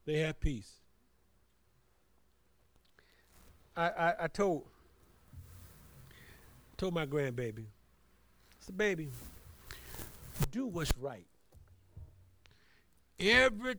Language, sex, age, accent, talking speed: English, male, 50-69, American, 75 wpm